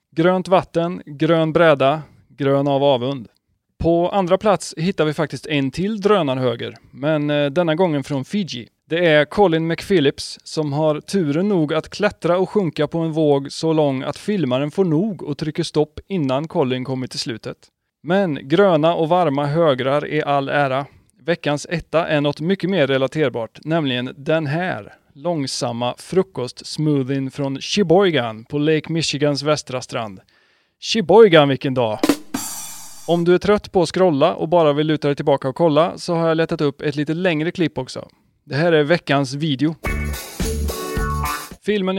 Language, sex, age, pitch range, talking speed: Swedish, male, 30-49, 140-175 Hz, 160 wpm